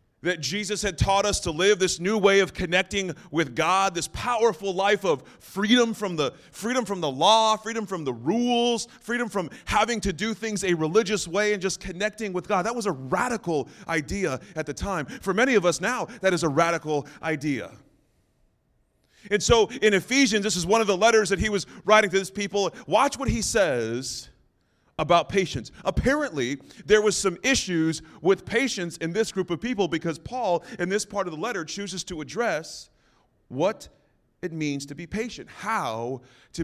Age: 30-49